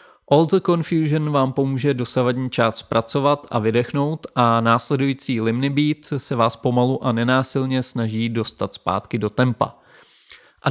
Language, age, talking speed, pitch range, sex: Czech, 30-49, 140 wpm, 115-135 Hz, male